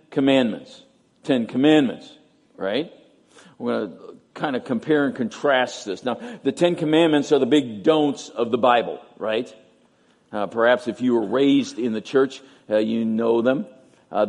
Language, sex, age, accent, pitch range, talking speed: English, male, 50-69, American, 125-175 Hz, 165 wpm